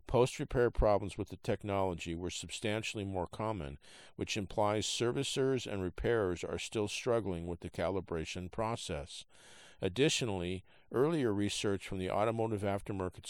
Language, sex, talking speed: English, male, 125 wpm